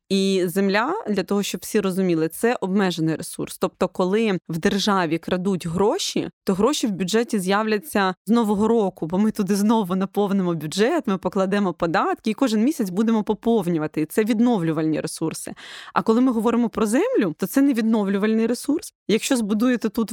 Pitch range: 190-235 Hz